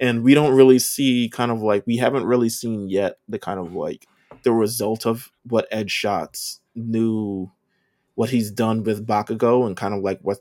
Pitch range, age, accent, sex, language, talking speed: 100-130 Hz, 20-39, American, male, English, 195 wpm